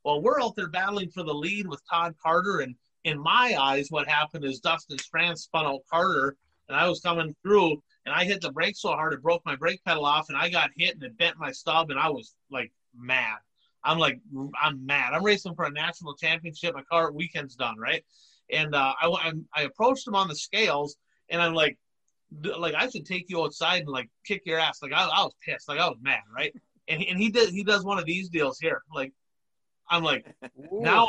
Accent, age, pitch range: American, 30-49, 150-200 Hz